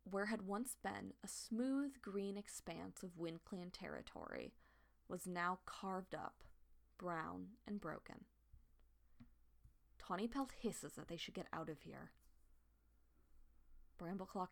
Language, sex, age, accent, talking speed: English, female, 20-39, American, 120 wpm